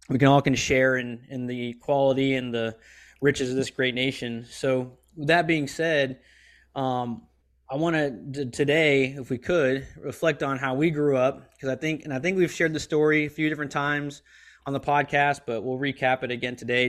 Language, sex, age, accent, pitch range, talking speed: English, male, 20-39, American, 125-145 Hz, 210 wpm